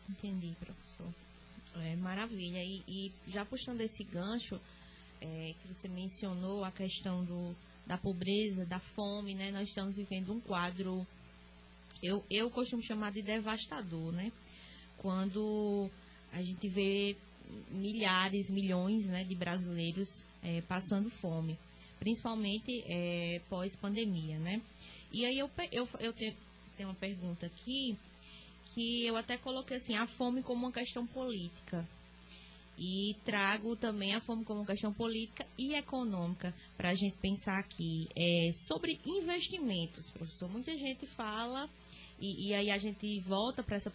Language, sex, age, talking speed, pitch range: Portuguese, female, 20-39, 140 wpm, 180-225 Hz